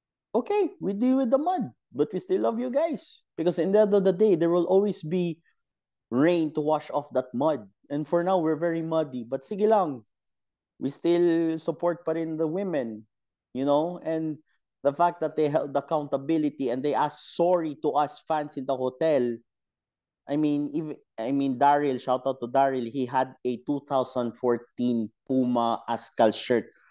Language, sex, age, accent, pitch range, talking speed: Filipino, male, 30-49, native, 125-170 Hz, 175 wpm